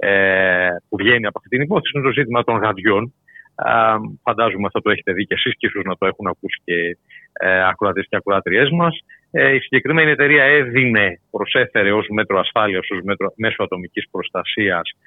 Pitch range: 105-165 Hz